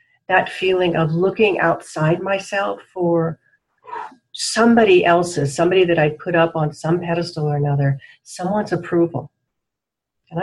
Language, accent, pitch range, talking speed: English, American, 155-210 Hz, 125 wpm